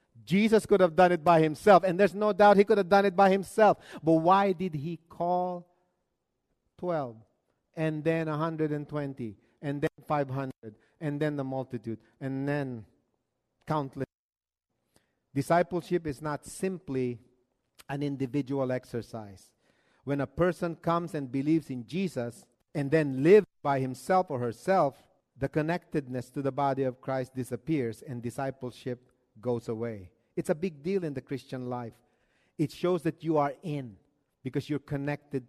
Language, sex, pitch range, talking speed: English, male, 130-175 Hz, 150 wpm